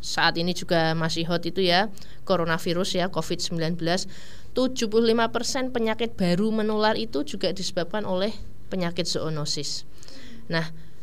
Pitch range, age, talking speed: 175-215 Hz, 20-39, 115 wpm